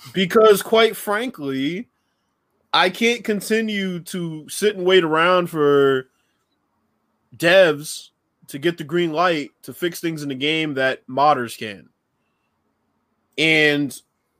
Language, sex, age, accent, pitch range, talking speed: English, male, 20-39, American, 130-170 Hz, 115 wpm